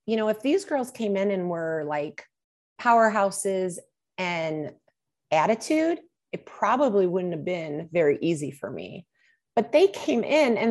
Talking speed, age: 150 wpm, 30-49